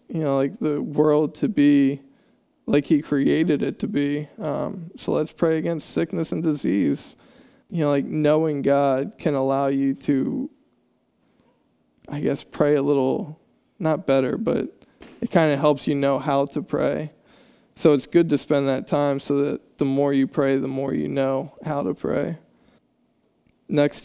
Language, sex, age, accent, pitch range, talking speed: English, male, 10-29, American, 140-155 Hz, 170 wpm